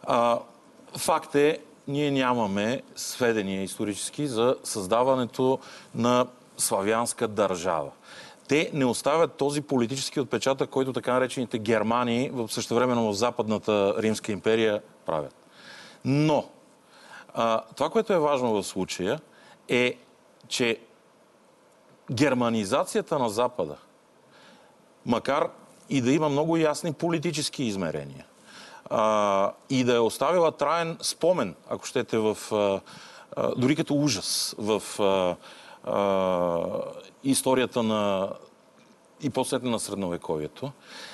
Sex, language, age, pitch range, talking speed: male, Bulgarian, 40-59, 110-145 Hz, 110 wpm